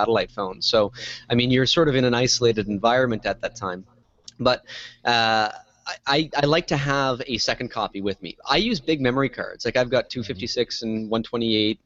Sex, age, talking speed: male, 20-39, 190 wpm